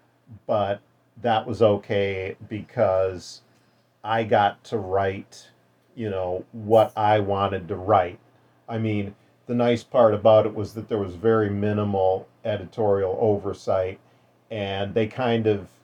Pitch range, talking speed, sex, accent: 95-110 Hz, 135 wpm, male, American